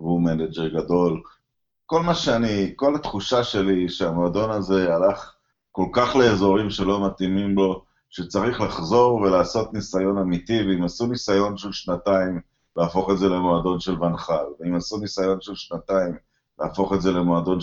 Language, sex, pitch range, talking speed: Hebrew, male, 90-110 Hz, 150 wpm